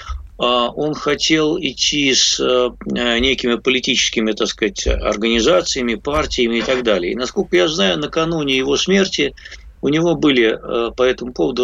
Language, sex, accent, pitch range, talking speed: Russian, male, native, 110-150 Hz, 135 wpm